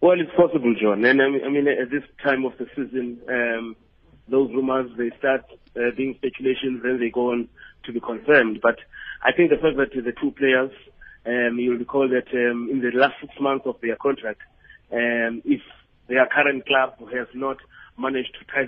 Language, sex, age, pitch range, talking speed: English, male, 30-49, 120-135 Hz, 200 wpm